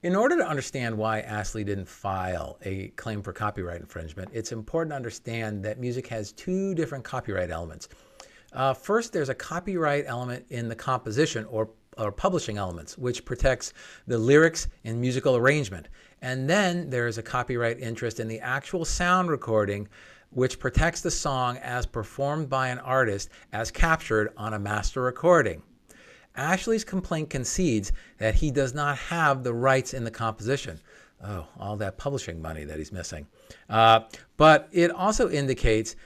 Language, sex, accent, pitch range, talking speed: English, male, American, 110-150 Hz, 160 wpm